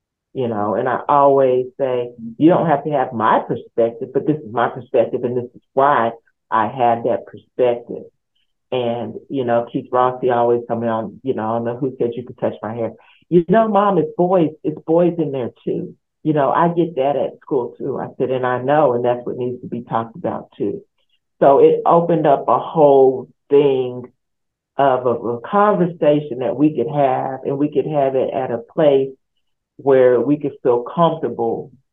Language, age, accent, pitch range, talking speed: English, 50-69, American, 125-155 Hz, 200 wpm